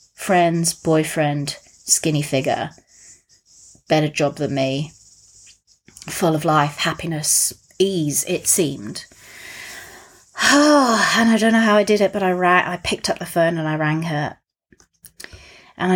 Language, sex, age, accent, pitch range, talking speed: English, female, 30-49, British, 160-195 Hz, 130 wpm